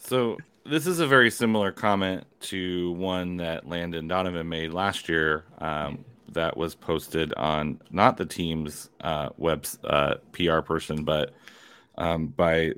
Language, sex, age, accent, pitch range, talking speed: English, male, 30-49, American, 80-100 Hz, 140 wpm